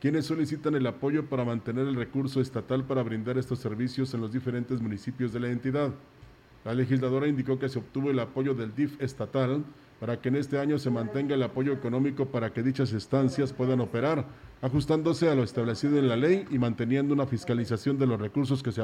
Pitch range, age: 120-140 Hz, 40-59